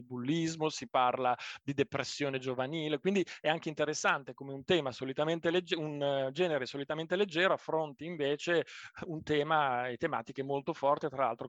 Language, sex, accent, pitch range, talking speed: Italian, male, native, 135-170 Hz, 145 wpm